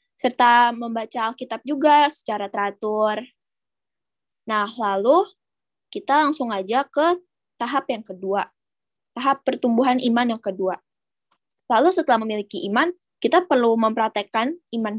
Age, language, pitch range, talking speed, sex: 20-39, Indonesian, 215-290 Hz, 110 wpm, female